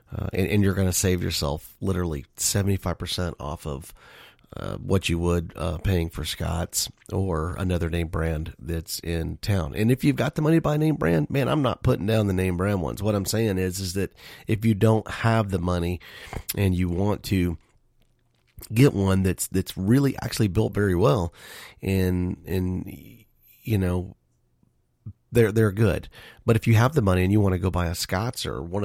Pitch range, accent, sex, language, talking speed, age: 85-110 Hz, American, male, English, 200 wpm, 30-49